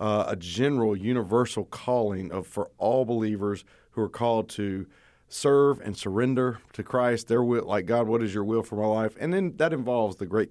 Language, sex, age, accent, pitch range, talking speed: English, male, 40-59, American, 105-125 Hz, 200 wpm